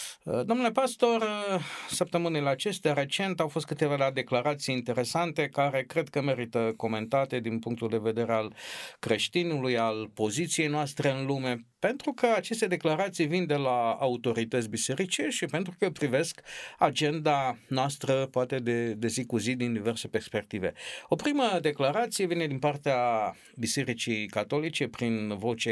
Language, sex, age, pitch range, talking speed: Romanian, male, 50-69, 115-160 Hz, 140 wpm